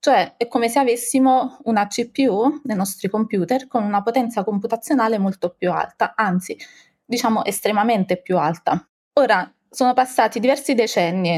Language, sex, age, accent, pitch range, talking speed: Italian, female, 20-39, native, 185-235 Hz, 140 wpm